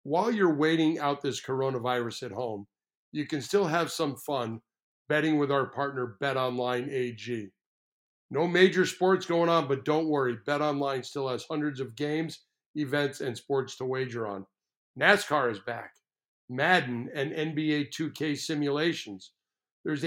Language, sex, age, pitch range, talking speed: English, male, 50-69, 135-165 Hz, 145 wpm